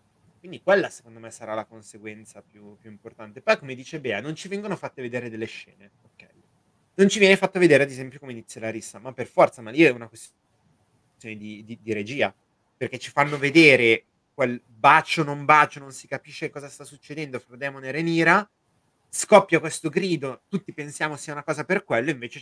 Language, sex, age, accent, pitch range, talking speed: Italian, male, 30-49, native, 120-150 Hz, 200 wpm